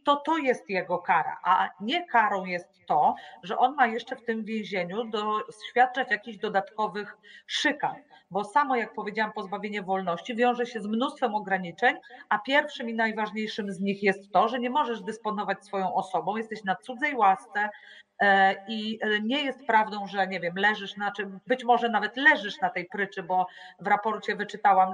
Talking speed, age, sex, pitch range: 170 wpm, 40-59, female, 190-235 Hz